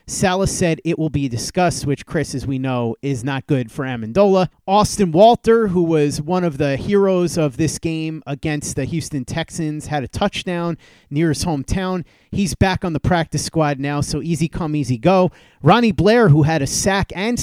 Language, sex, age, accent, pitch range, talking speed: English, male, 30-49, American, 140-180 Hz, 195 wpm